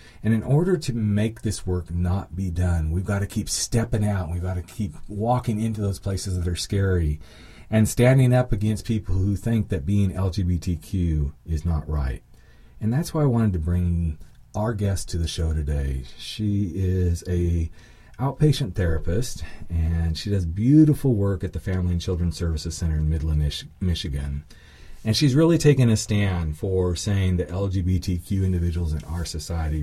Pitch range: 85-110 Hz